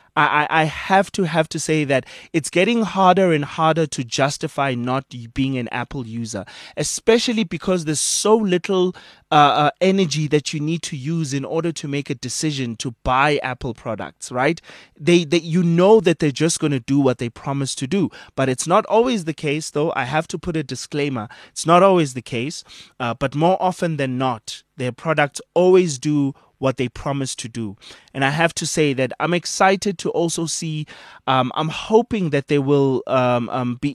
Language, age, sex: English, 20-39, male